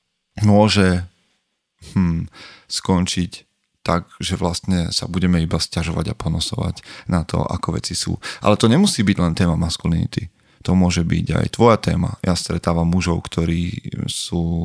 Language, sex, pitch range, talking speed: Slovak, male, 85-100 Hz, 145 wpm